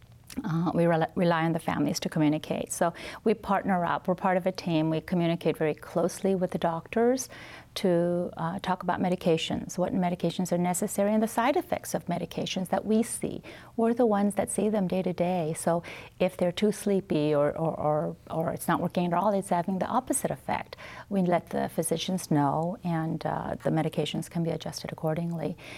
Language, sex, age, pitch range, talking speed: English, female, 40-59, 155-190 Hz, 195 wpm